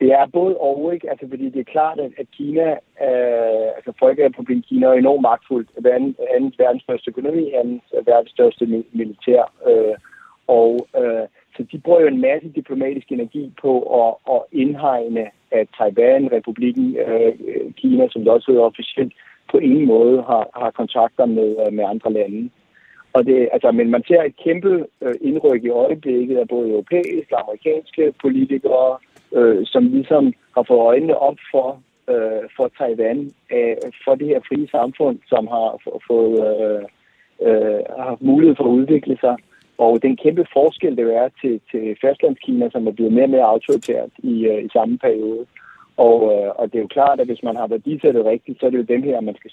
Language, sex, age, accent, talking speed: Danish, male, 60-79, native, 190 wpm